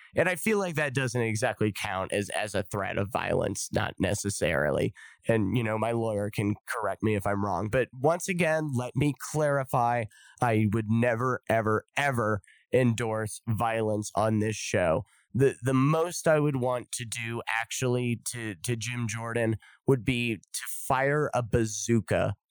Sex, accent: male, American